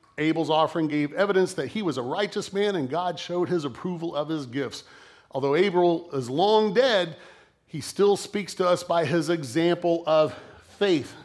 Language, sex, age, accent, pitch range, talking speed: English, male, 40-59, American, 145-185 Hz, 175 wpm